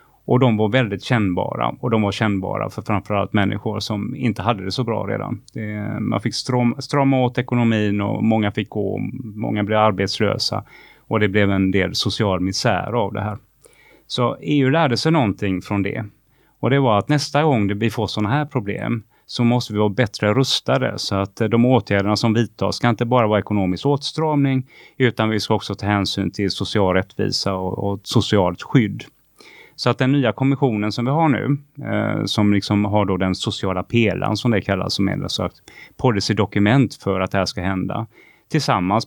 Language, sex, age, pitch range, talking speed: Swedish, male, 30-49, 100-125 Hz, 185 wpm